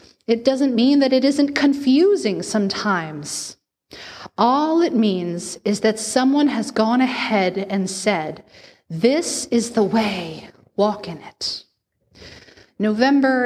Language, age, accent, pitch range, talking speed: English, 30-49, American, 195-250 Hz, 120 wpm